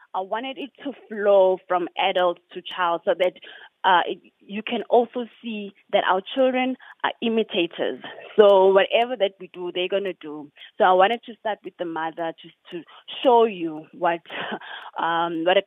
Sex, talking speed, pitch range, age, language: female, 180 wpm, 175-220 Hz, 20-39, English